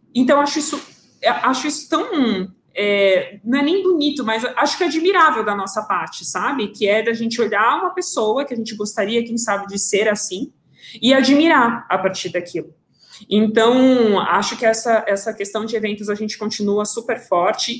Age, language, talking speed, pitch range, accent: 20-39, Portuguese, 180 wpm, 195-240 Hz, Brazilian